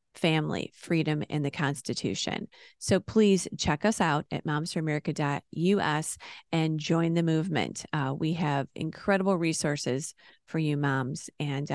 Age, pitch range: 30-49, 160-210 Hz